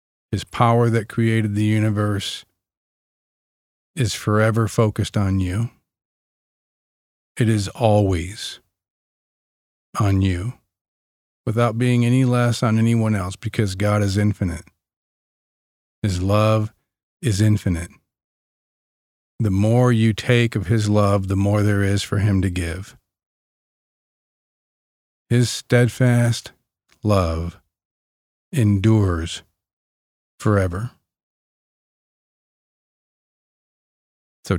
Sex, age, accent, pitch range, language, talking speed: male, 40-59, American, 95-115 Hz, English, 90 wpm